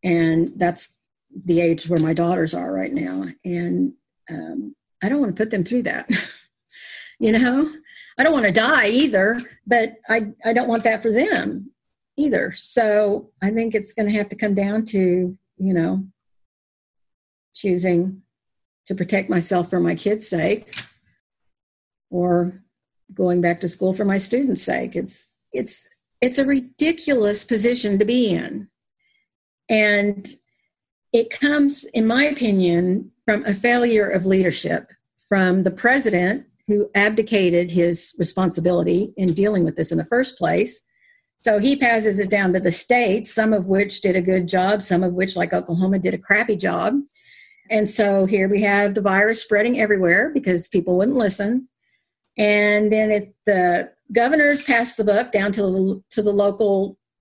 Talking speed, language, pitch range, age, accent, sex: 160 wpm, English, 185-230 Hz, 50-69, American, female